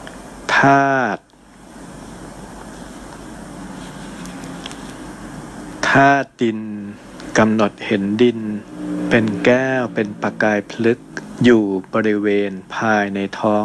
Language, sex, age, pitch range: Thai, male, 60-79, 105-120 Hz